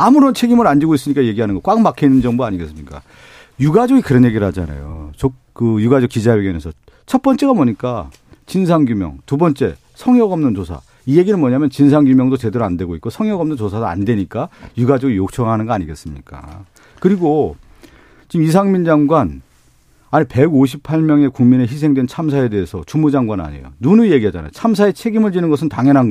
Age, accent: 40-59, native